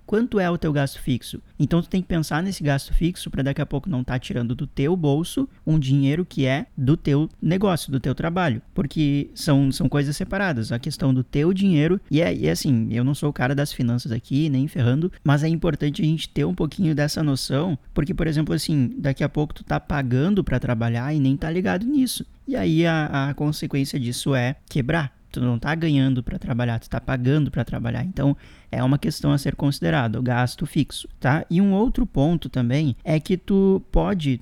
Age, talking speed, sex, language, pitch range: 20-39, 220 wpm, male, Portuguese, 130-170 Hz